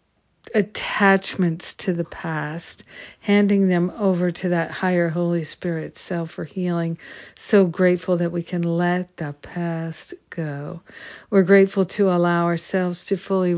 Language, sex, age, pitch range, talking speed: English, female, 50-69, 170-190 Hz, 135 wpm